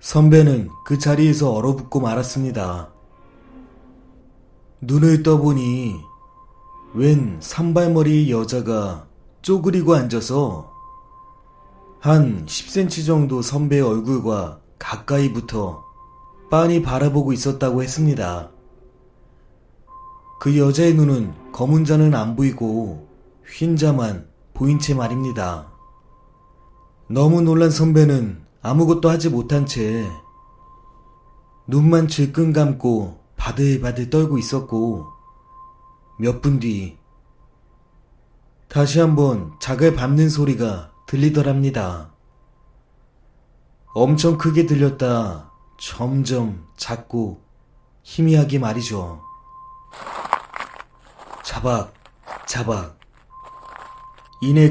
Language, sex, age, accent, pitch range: Korean, male, 30-49, native, 115-155 Hz